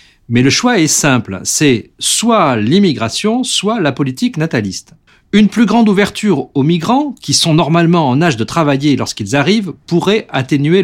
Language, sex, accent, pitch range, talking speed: French, male, French, 115-175 Hz, 160 wpm